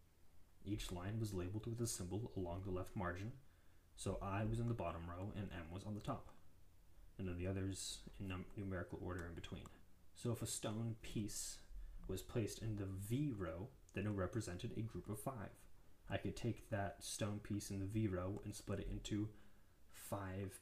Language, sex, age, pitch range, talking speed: English, male, 20-39, 90-115 Hz, 190 wpm